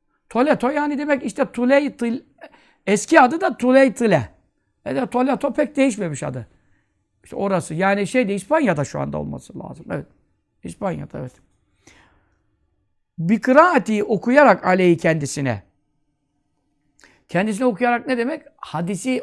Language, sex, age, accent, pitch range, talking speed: Turkish, male, 60-79, native, 160-255 Hz, 120 wpm